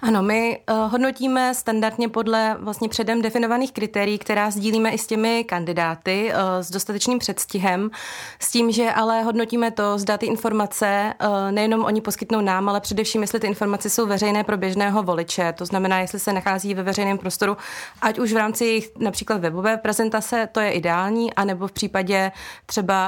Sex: female